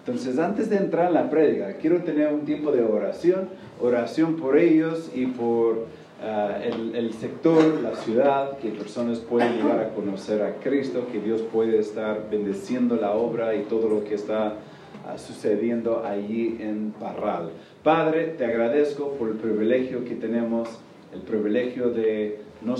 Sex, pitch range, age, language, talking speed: male, 105-125 Hz, 40-59, Spanish, 160 wpm